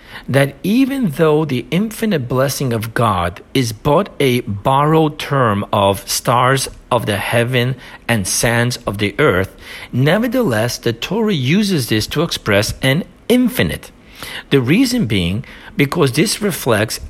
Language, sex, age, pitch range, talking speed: English, male, 50-69, 110-170 Hz, 135 wpm